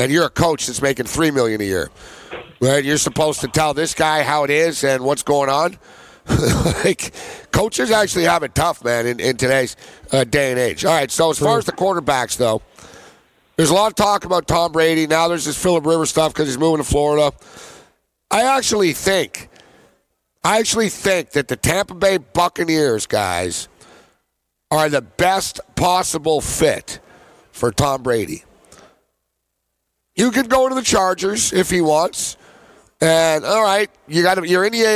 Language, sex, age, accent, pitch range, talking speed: English, male, 60-79, American, 150-190 Hz, 180 wpm